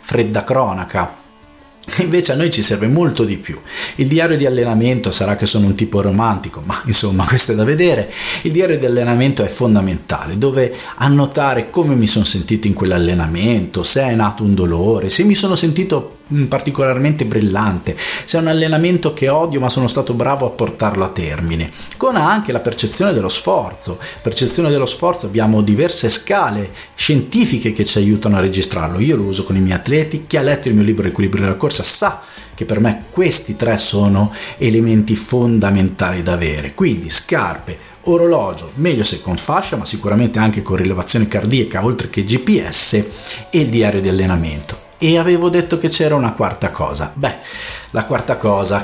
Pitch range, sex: 100-135 Hz, male